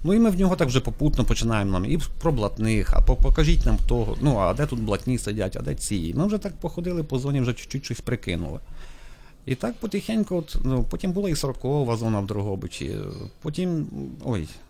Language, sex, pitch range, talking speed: Ukrainian, male, 105-150 Hz, 205 wpm